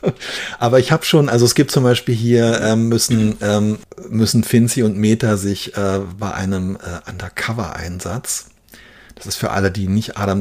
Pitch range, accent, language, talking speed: 100-120 Hz, German, German, 175 wpm